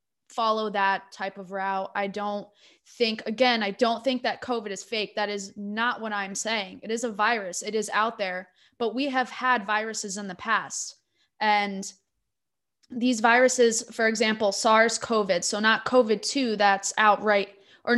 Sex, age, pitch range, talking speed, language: female, 20-39, 205-245 Hz, 170 wpm, English